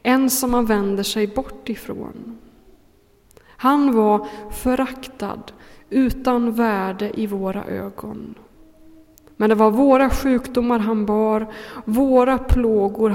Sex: female